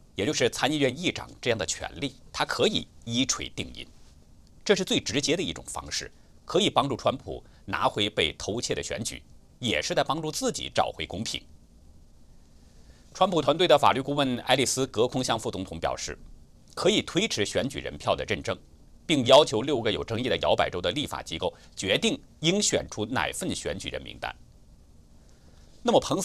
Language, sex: Chinese, male